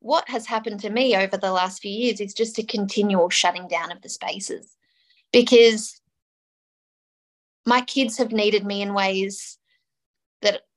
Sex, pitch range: female, 200-255 Hz